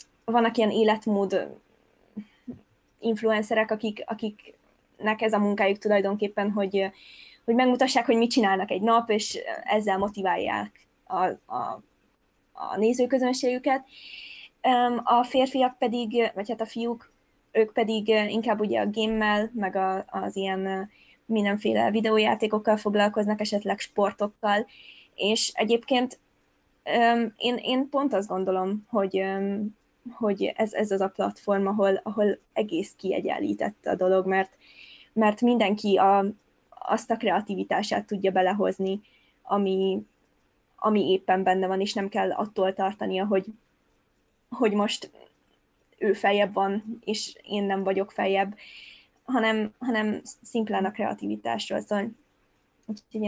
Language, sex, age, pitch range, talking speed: Hungarian, female, 20-39, 195-230 Hz, 115 wpm